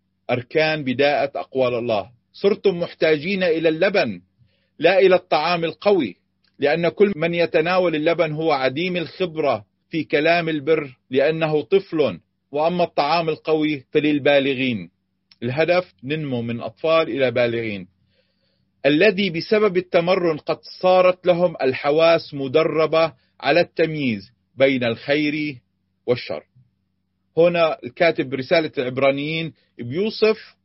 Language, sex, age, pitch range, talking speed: Arabic, male, 40-59, 125-180 Hz, 105 wpm